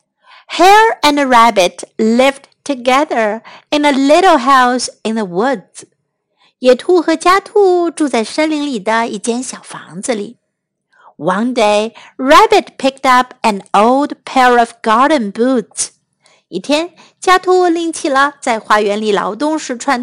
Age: 50-69